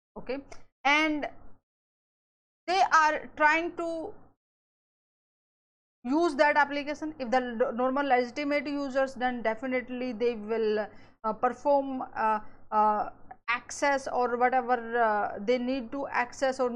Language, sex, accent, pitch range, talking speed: English, female, Indian, 225-275 Hz, 110 wpm